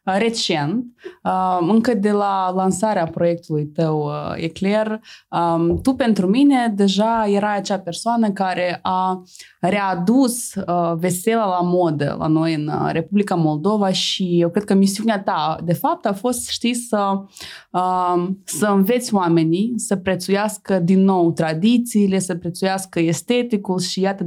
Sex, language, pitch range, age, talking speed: female, Romanian, 170-205 Hz, 20-39, 125 wpm